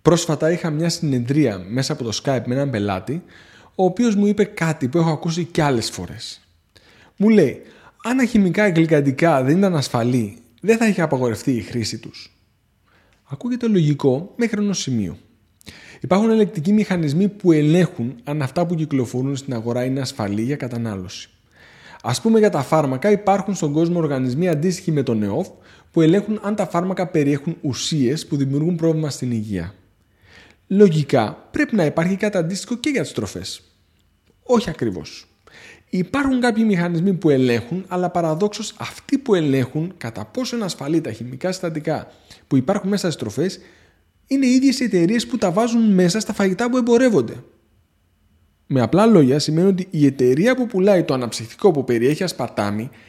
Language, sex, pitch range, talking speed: Greek, male, 115-190 Hz, 160 wpm